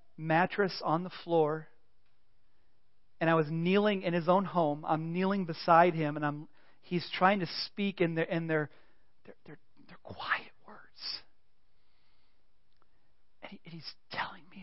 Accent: American